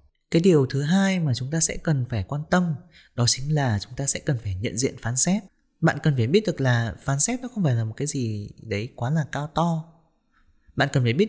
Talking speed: 255 wpm